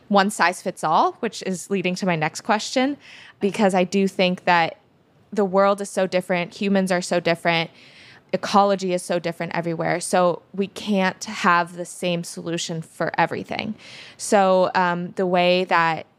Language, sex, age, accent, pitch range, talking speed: English, female, 20-39, American, 175-200 Hz, 165 wpm